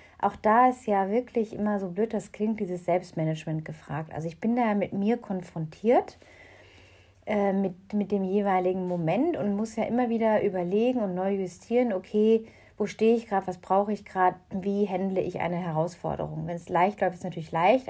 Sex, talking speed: female, 195 wpm